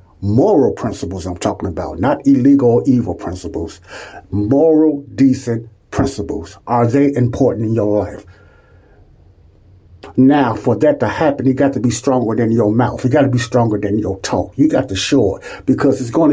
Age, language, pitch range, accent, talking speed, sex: 60-79, English, 100-130 Hz, American, 175 wpm, male